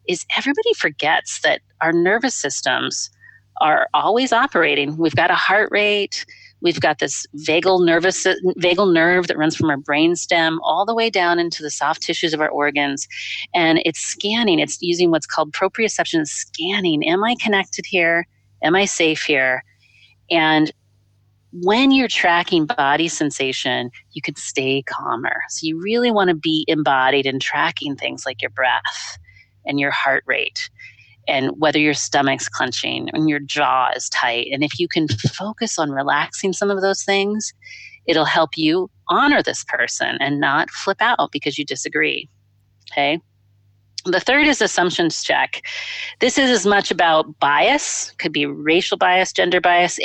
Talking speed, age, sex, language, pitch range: 160 wpm, 40-59, female, English, 145-200 Hz